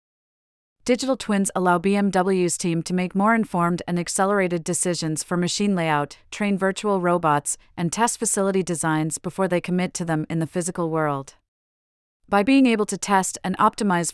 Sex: female